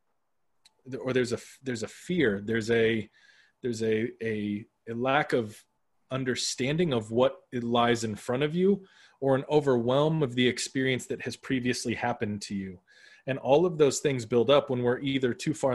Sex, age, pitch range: male, 20-39, 115-145 Hz